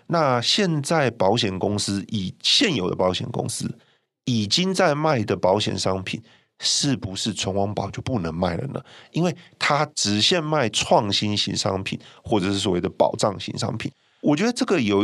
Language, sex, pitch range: Chinese, male, 100-135 Hz